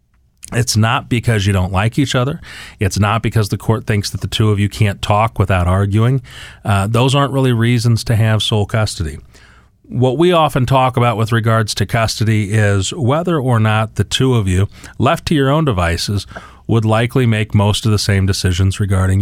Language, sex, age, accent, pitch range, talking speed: English, male, 40-59, American, 95-115 Hz, 195 wpm